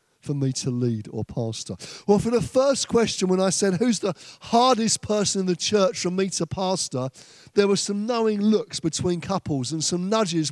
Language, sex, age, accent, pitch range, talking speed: English, male, 40-59, British, 140-200 Hz, 200 wpm